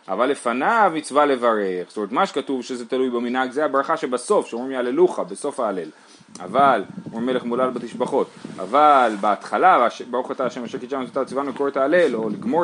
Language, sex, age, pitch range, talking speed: Hebrew, male, 30-49, 115-150 Hz, 170 wpm